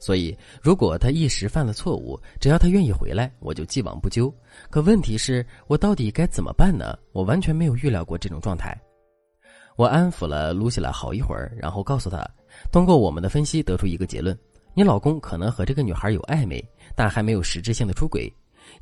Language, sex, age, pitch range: Chinese, male, 20-39, 95-135 Hz